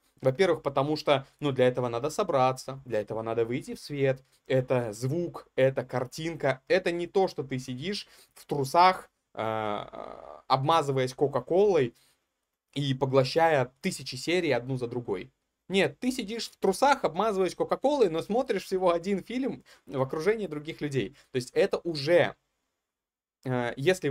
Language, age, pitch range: Russian, 20-39, 125-165 Hz